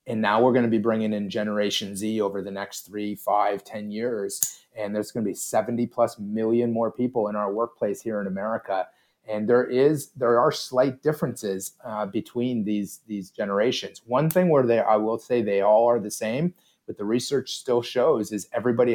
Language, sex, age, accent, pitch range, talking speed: English, male, 30-49, American, 105-135 Hz, 205 wpm